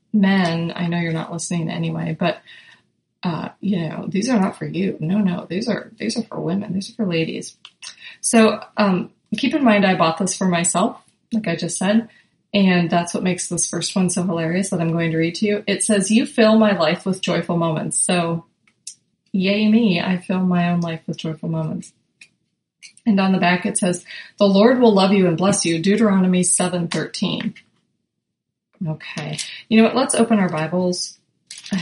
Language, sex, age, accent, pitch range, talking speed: English, female, 30-49, American, 175-215 Hz, 195 wpm